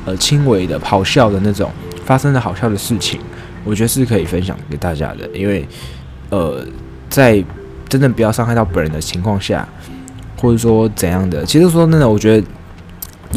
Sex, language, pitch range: male, Chinese, 85-110 Hz